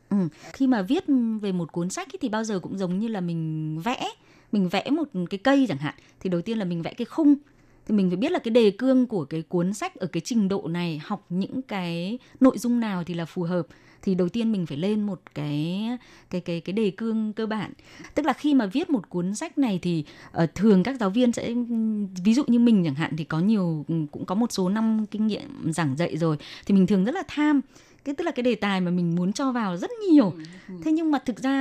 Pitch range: 175-255 Hz